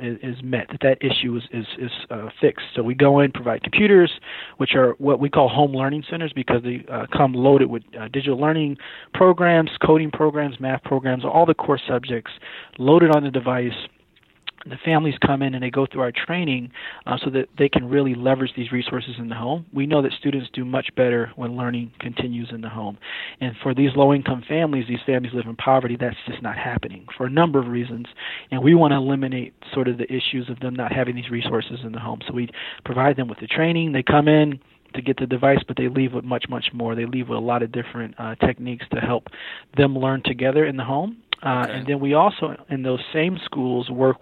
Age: 30-49